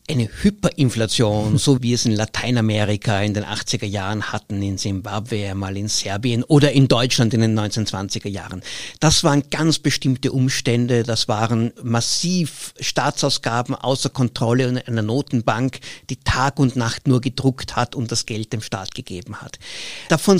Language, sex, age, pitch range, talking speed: German, male, 50-69, 115-150 Hz, 155 wpm